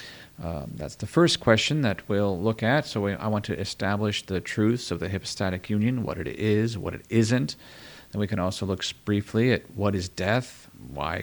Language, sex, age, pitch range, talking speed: English, male, 40-59, 95-115 Hz, 200 wpm